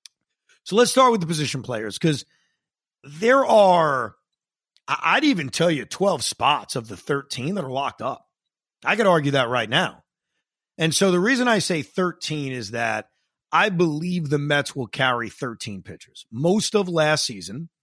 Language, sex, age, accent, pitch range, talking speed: English, male, 30-49, American, 130-185 Hz, 170 wpm